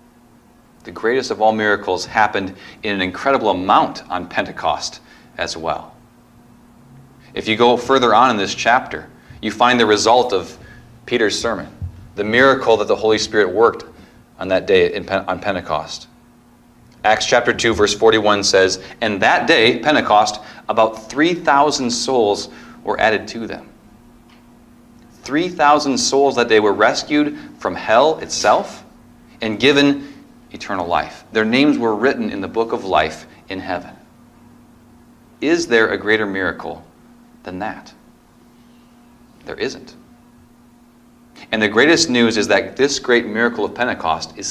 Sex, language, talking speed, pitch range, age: male, English, 140 wpm, 105-120 Hz, 40-59